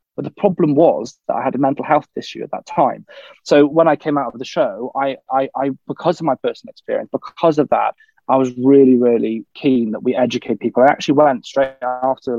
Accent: British